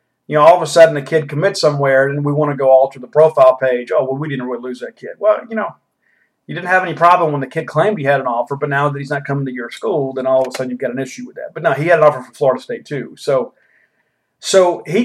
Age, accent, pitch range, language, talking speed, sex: 40-59, American, 140-170 Hz, English, 305 wpm, male